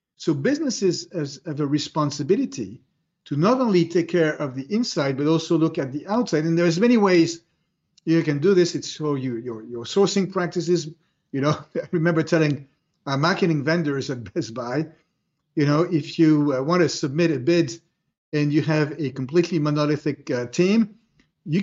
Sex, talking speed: male, 175 wpm